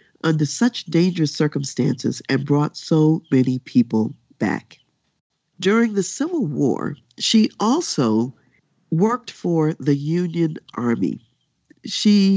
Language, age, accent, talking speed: English, 50-69, American, 105 wpm